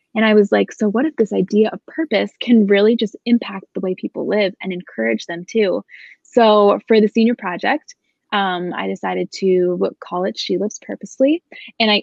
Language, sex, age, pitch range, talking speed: English, female, 20-39, 190-225 Hz, 195 wpm